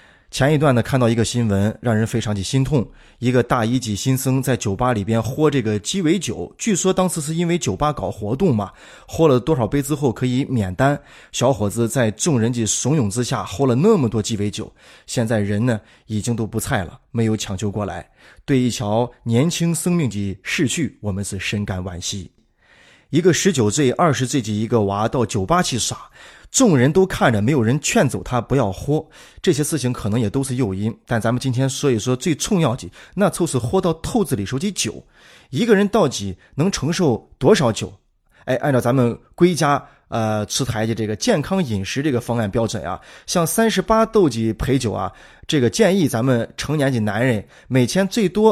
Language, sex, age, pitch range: Chinese, male, 20-39, 110-155 Hz